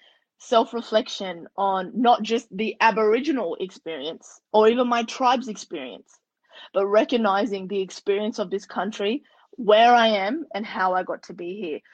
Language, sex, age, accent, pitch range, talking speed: English, female, 20-39, Australian, 195-245 Hz, 145 wpm